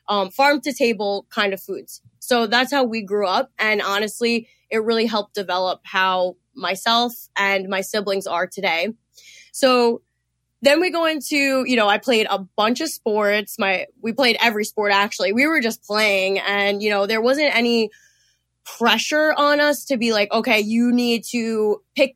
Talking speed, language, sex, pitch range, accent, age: 180 wpm, English, female, 200-245 Hz, American, 20-39